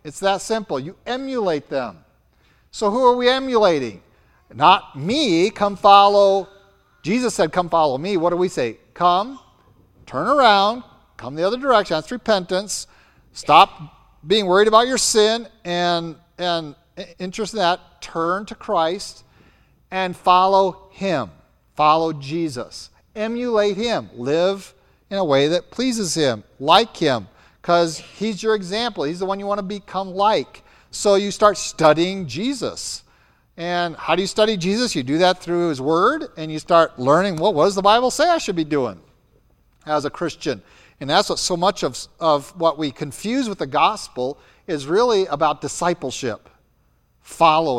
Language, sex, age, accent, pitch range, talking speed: English, male, 50-69, American, 155-210 Hz, 160 wpm